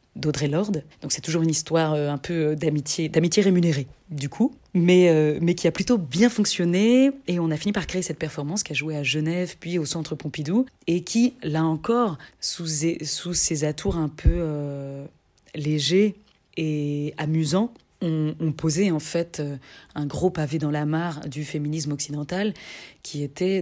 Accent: French